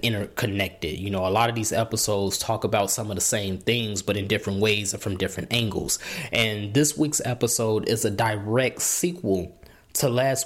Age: 20-39